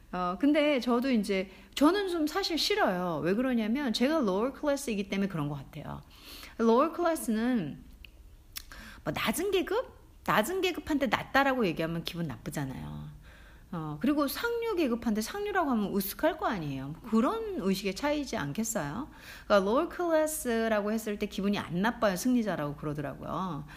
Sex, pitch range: female, 170-275 Hz